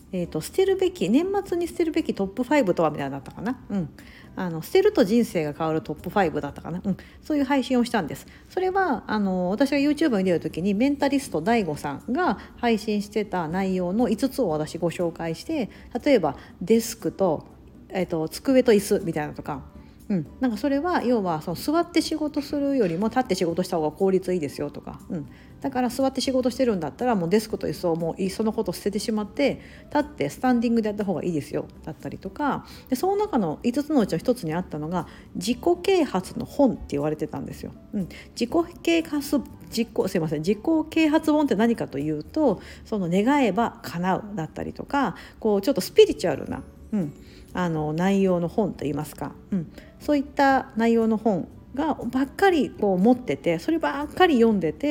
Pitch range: 175-280 Hz